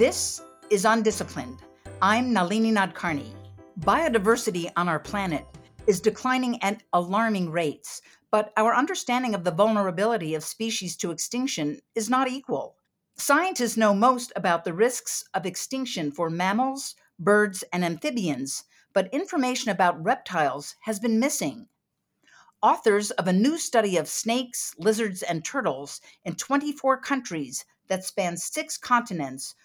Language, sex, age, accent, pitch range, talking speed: English, female, 50-69, American, 175-245 Hz, 130 wpm